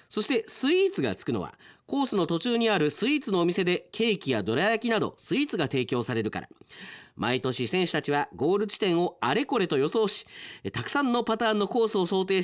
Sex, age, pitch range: male, 40-59, 120-200 Hz